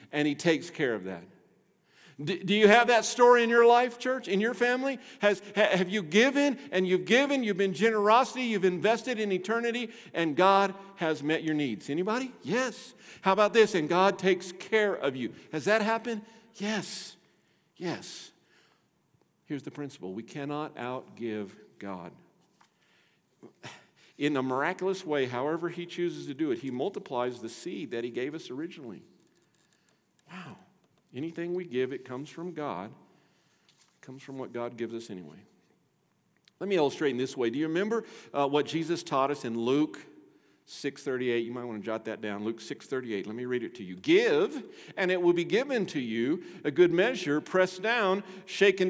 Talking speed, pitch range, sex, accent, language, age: 175 wpm, 145-220 Hz, male, American, English, 50-69